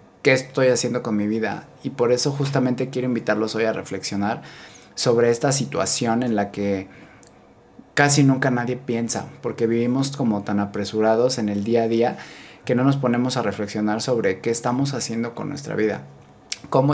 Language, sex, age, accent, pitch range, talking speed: Spanish, male, 20-39, Mexican, 110-135 Hz, 175 wpm